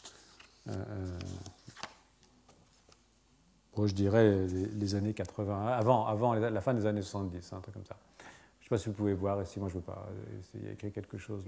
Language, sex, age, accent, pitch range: French, male, 40-59, French, 100-125 Hz